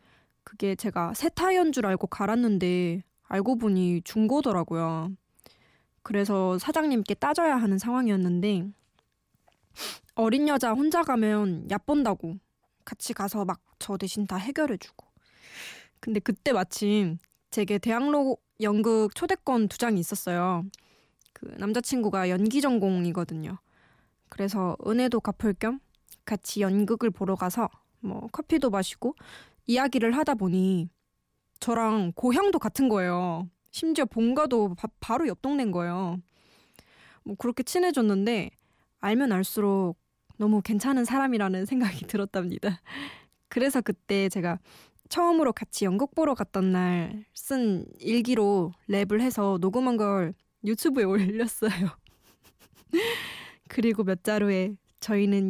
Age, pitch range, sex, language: 20-39, 190-245 Hz, female, Korean